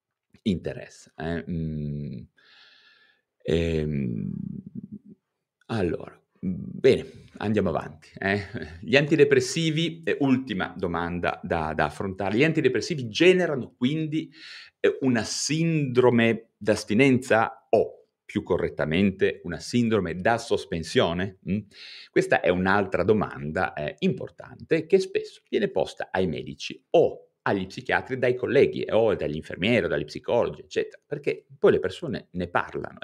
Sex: male